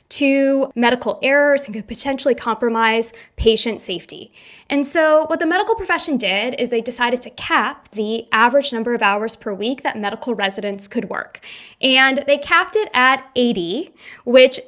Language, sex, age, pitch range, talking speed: English, female, 20-39, 225-285 Hz, 165 wpm